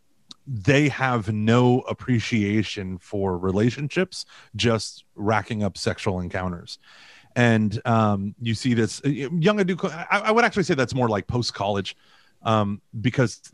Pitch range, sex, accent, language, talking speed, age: 105-125 Hz, male, American, English, 125 wpm, 30-49